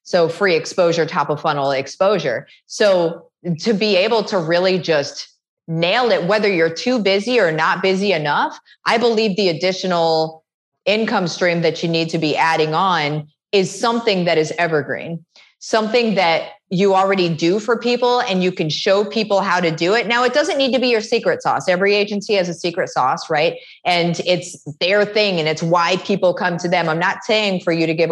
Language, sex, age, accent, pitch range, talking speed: English, female, 30-49, American, 165-215 Hz, 195 wpm